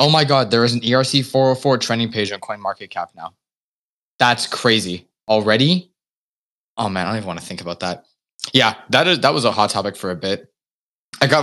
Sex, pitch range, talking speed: male, 110-130 Hz, 205 wpm